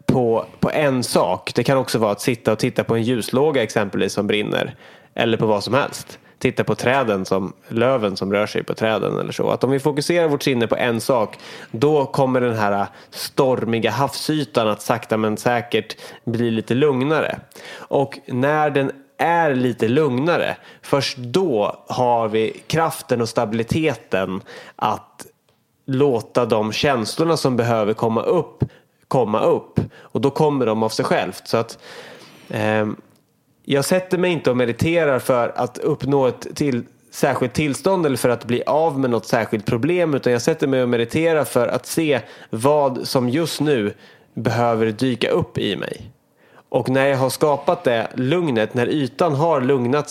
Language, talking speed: English, 170 wpm